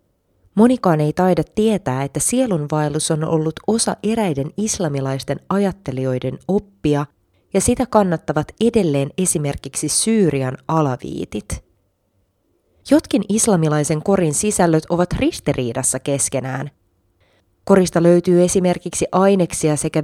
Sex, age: female, 20-39